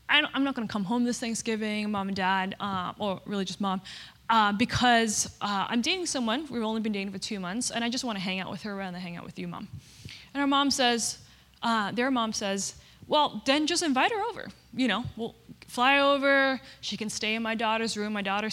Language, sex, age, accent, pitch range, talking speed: English, female, 20-39, American, 200-250 Hz, 235 wpm